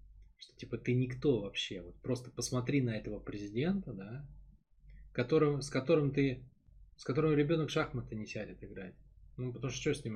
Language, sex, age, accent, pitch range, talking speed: Russian, male, 20-39, native, 105-135 Hz, 170 wpm